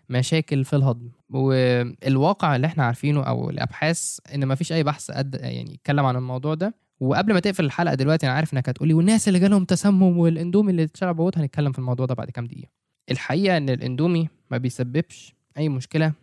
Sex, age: male, 10-29